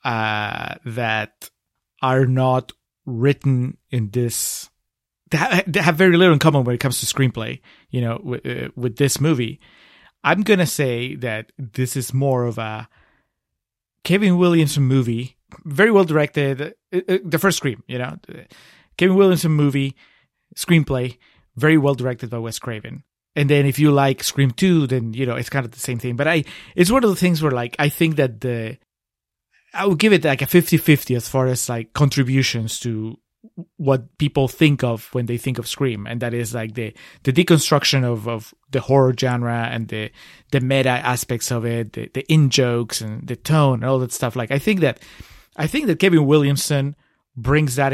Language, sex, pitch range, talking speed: English, male, 120-150 Hz, 190 wpm